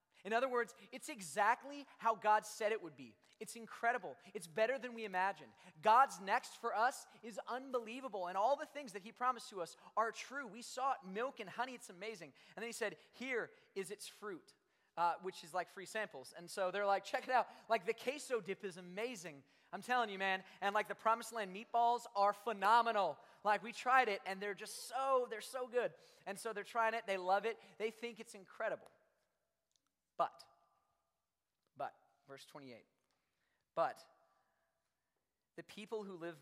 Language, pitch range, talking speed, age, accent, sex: English, 170-230 Hz, 190 wpm, 20-39, American, male